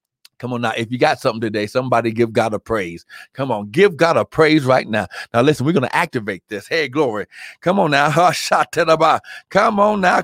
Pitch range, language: 155-205 Hz, English